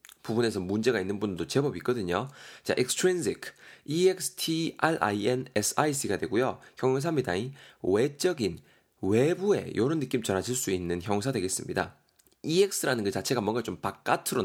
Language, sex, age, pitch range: Korean, male, 20-39, 95-145 Hz